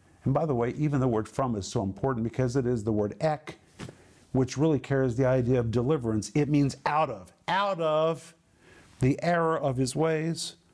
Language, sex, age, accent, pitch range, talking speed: English, male, 50-69, American, 125-160 Hz, 195 wpm